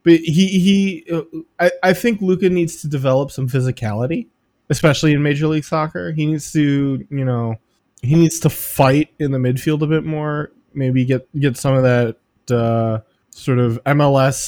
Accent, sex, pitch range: American, male, 120-155 Hz